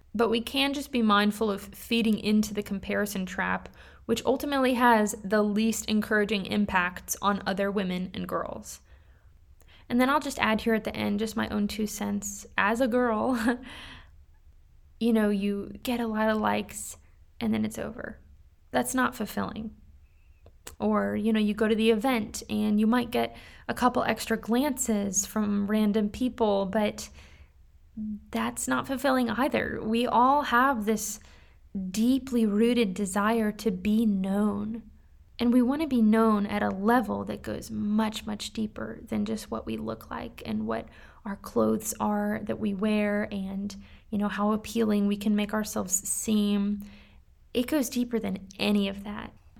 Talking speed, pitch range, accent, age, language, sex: 165 wpm, 200-225 Hz, American, 20-39, English, female